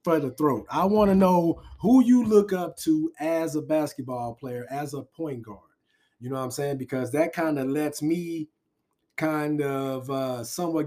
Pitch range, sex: 125-145 Hz, male